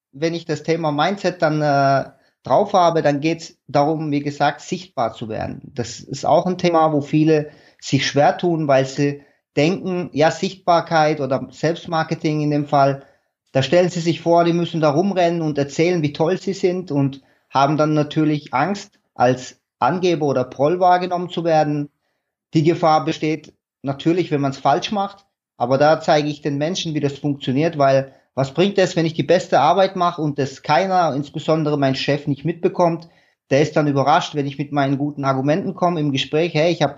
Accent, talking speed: German, 190 wpm